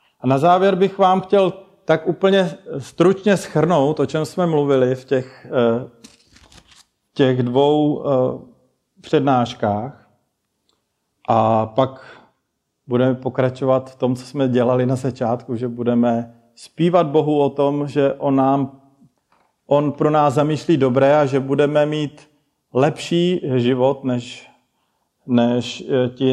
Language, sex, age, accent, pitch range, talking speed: Czech, male, 40-59, native, 130-165 Hz, 120 wpm